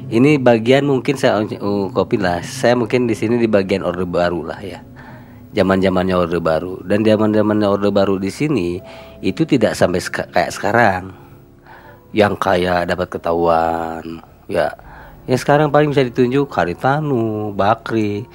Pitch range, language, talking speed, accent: 90-120 Hz, Indonesian, 145 wpm, native